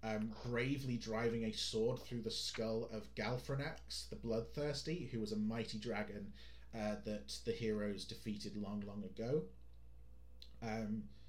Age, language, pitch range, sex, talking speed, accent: 30-49, English, 105-115 Hz, male, 140 wpm, British